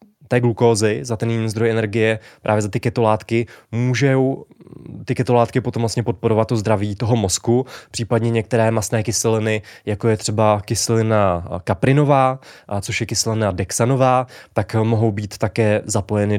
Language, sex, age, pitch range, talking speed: Czech, male, 20-39, 105-120 Hz, 145 wpm